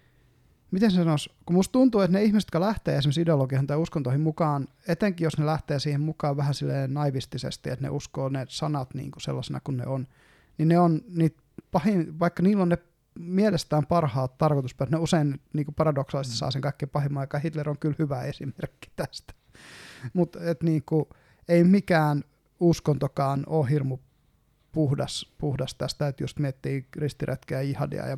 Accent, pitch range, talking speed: native, 135-160 Hz, 165 wpm